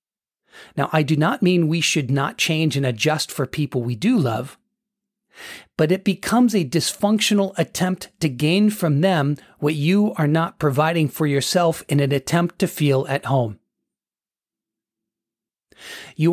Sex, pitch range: male, 135-175 Hz